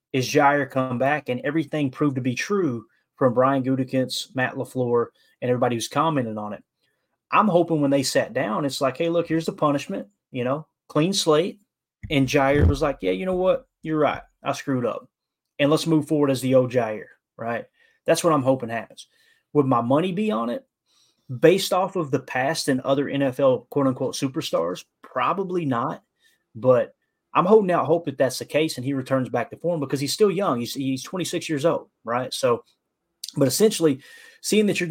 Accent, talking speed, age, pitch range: American, 200 wpm, 30-49, 130-165 Hz